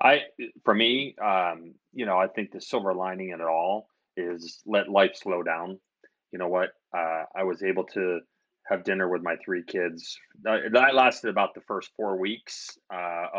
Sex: male